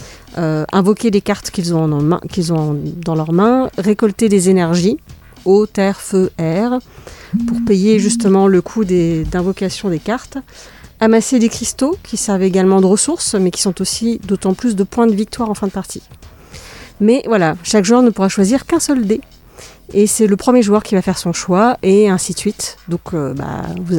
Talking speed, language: 195 wpm, French